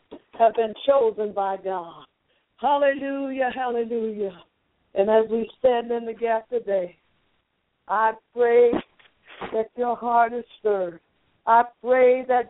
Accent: American